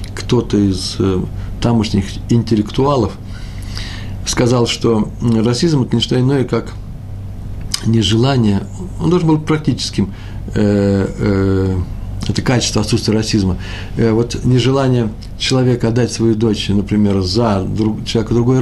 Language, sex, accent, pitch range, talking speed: Russian, male, native, 100-115 Hz, 100 wpm